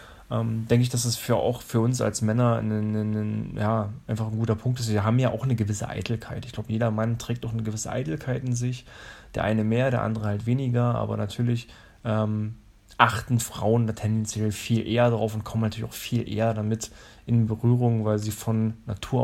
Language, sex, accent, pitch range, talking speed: German, male, German, 110-120 Hz, 210 wpm